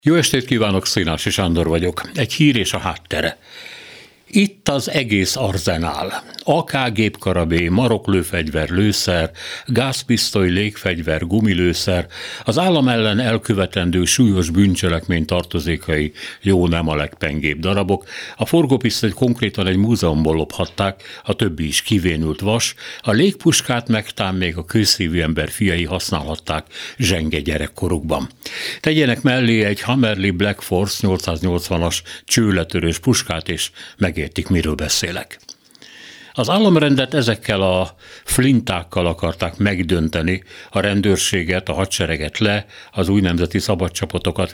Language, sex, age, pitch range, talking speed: Hungarian, male, 60-79, 85-115 Hz, 115 wpm